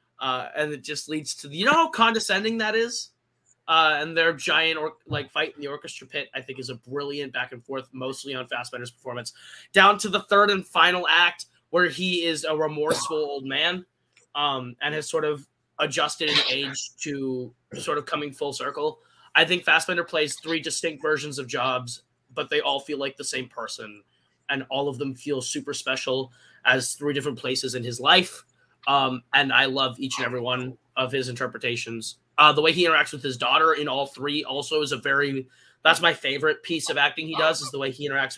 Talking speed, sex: 210 wpm, male